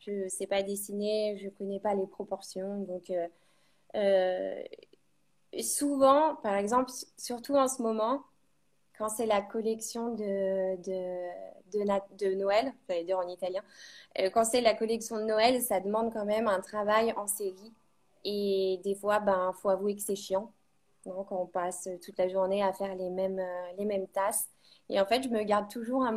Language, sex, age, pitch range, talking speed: French, female, 20-39, 195-240 Hz, 185 wpm